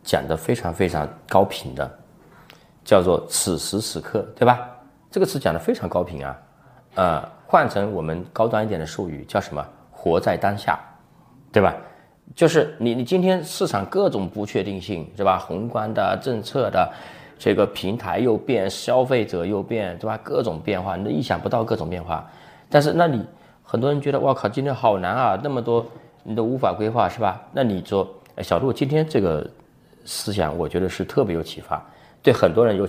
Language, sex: Chinese, male